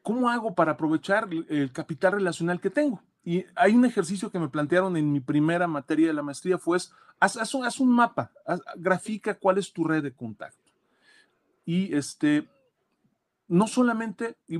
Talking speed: 180 wpm